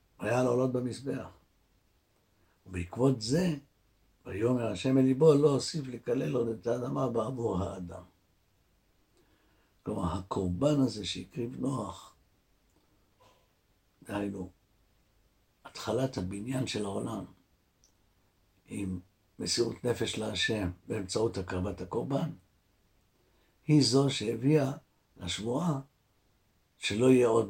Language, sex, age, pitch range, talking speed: Hebrew, male, 60-79, 95-125 Hz, 90 wpm